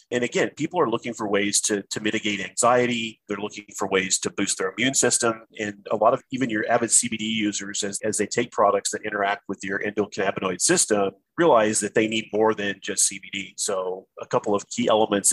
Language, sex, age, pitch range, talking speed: English, male, 30-49, 100-115 Hz, 210 wpm